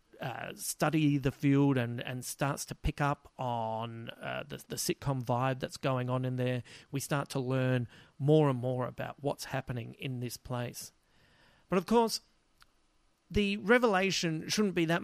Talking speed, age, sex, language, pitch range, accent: 165 wpm, 40-59, male, English, 135-180 Hz, Australian